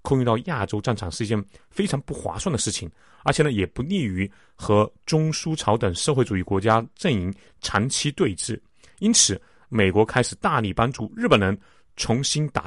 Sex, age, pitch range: male, 30-49, 100-150 Hz